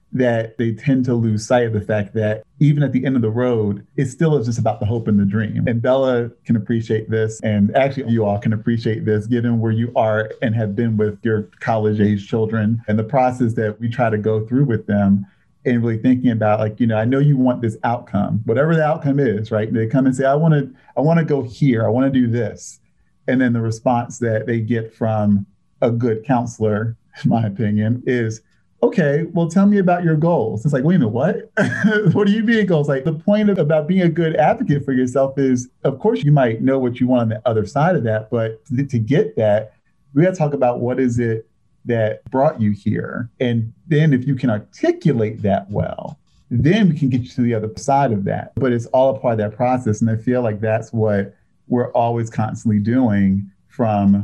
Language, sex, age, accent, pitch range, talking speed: English, male, 40-59, American, 110-135 Hz, 230 wpm